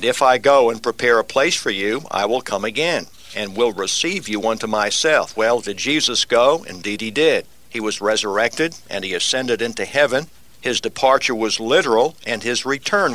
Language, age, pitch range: English, 60-79, 115-145 Hz